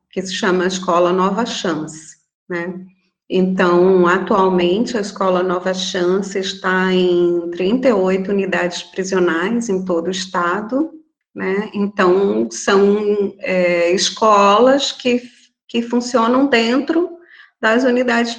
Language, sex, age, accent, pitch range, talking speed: Portuguese, female, 40-59, Brazilian, 190-275 Hz, 105 wpm